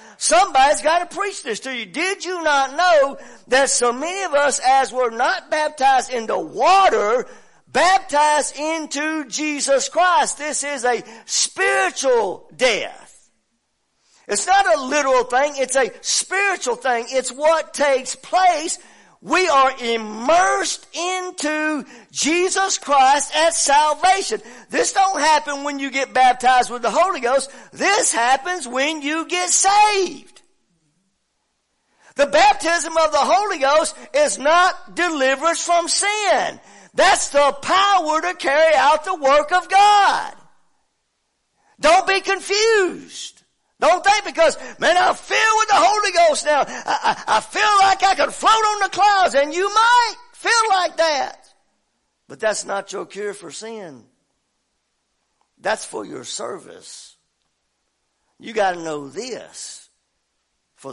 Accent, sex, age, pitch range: American, male, 50-69, 260-370 Hz